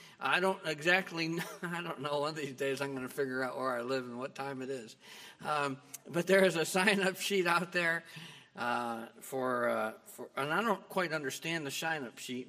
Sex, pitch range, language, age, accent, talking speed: male, 130-180 Hz, English, 60-79, American, 210 wpm